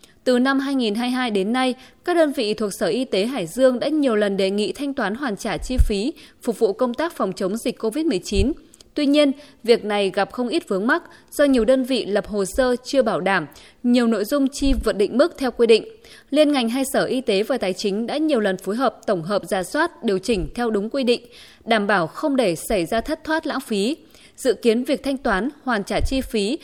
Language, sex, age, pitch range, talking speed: Vietnamese, female, 20-39, 205-275 Hz, 235 wpm